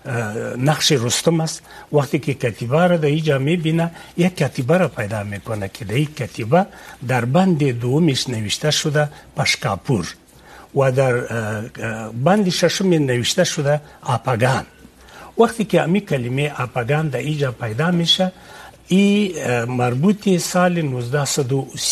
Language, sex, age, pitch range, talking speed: Urdu, male, 60-79, 125-170 Hz, 125 wpm